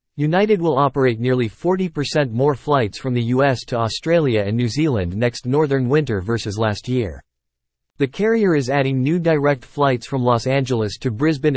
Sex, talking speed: male, 170 wpm